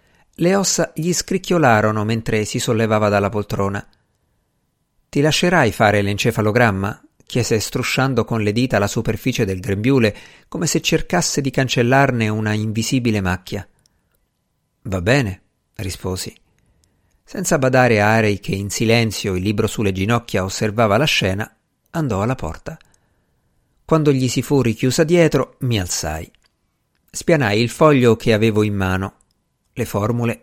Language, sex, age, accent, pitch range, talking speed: Italian, male, 50-69, native, 105-145 Hz, 130 wpm